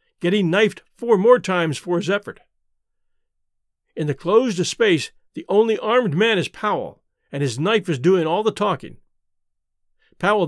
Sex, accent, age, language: male, American, 50-69, English